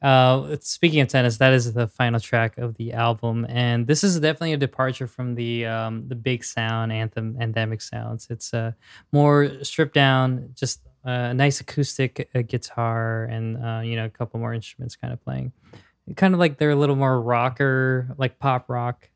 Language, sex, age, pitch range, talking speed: English, male, 20-39, 120-145 Hz, 185 wpm